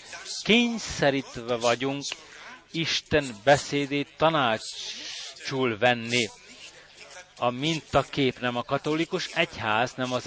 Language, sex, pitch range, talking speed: Hungarian, male, 125-165 Hz, 80 wpm